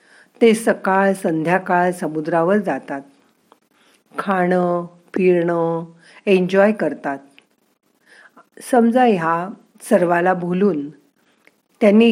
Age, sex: 50-69, female